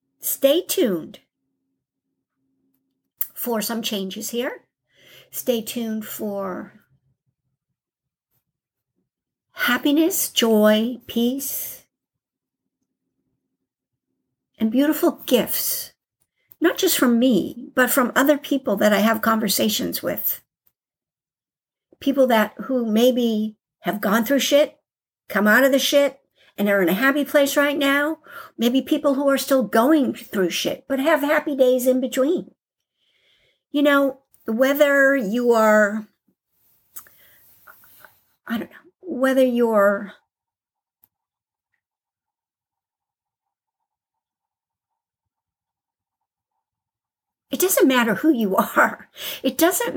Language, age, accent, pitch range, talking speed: English, 60-79, American, 220-290 Hz, 95 wpm